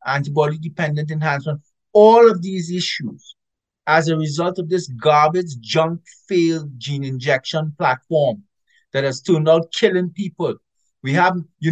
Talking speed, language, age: 140 wpm, English, 50-69